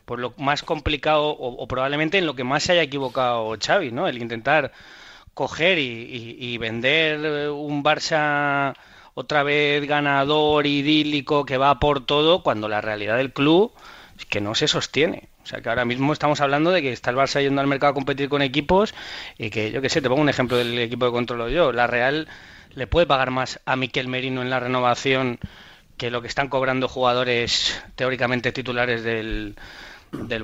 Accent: Spanish